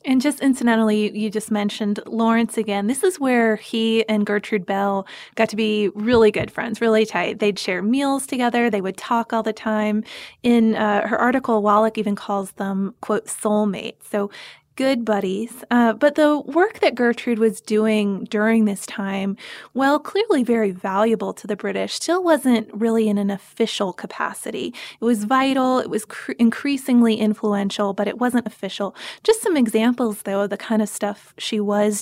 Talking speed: 175 wpm